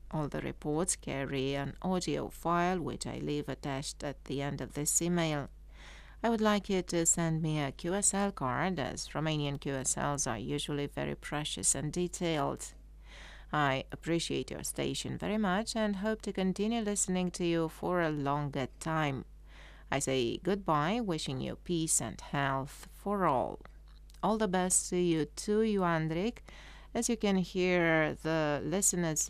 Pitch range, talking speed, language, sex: 140-195 Hz, 155 wpm, English, female